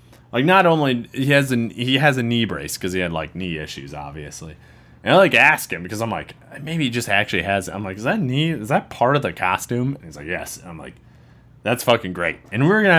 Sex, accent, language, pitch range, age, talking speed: male, American, English, 90-130 Hz, 20-39, 260 wpm